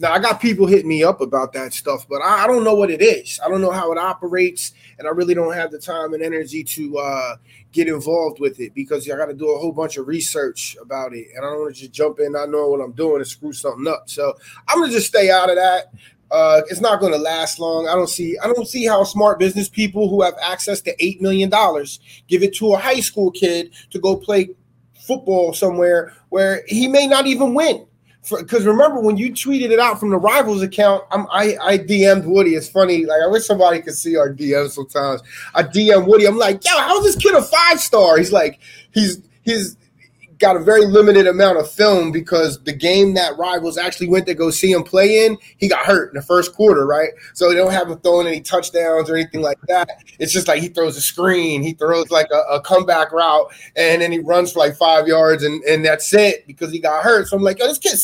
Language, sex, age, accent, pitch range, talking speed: English, male, 30-49, American, 160-210 Hz, 245 wpm